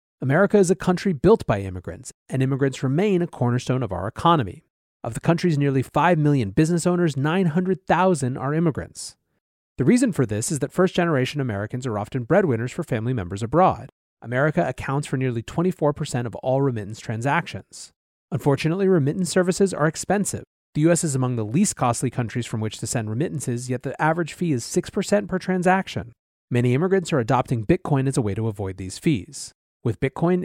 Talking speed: 180 wpm